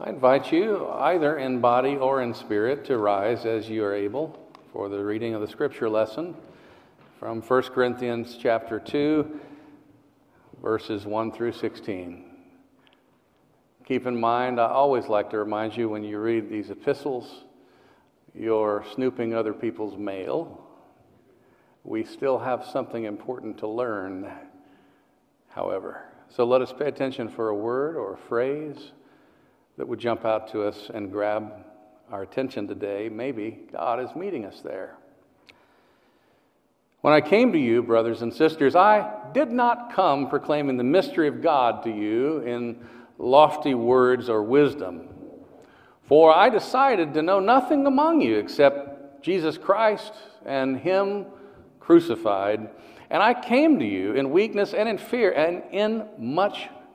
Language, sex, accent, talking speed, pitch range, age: English, male, American, 145 wpm, 110-155 Hz, 50-69